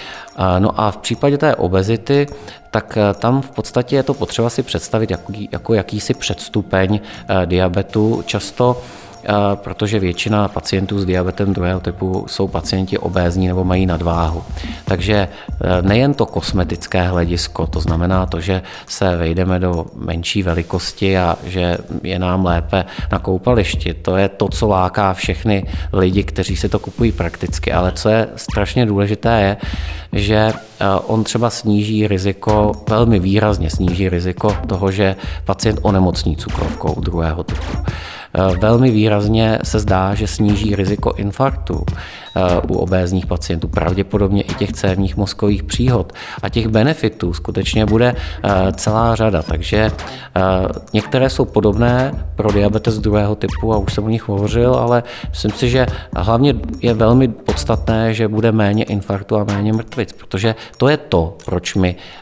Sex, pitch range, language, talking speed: male, 90-110 Hz, Czech, 145 wpm